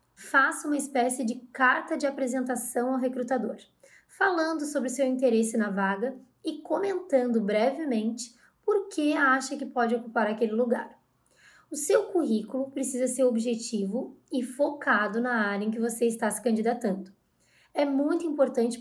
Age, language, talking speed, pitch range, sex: 20-39, Vietnamese, 145 wpm, 225-285 Hz, female